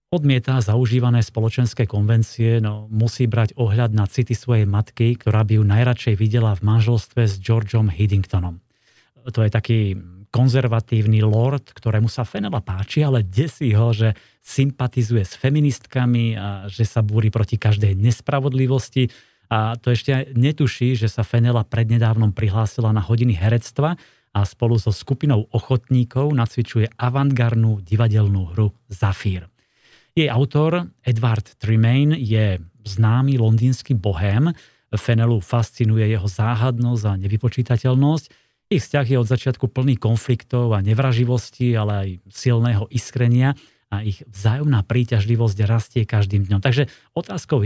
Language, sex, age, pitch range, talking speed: Slovak, male, 30-49, 110-125 Hz, 130 wpm